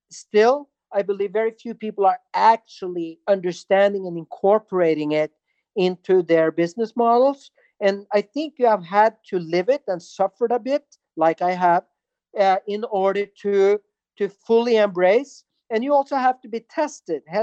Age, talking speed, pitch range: 50-69, 160 wpm, 180-220 Hz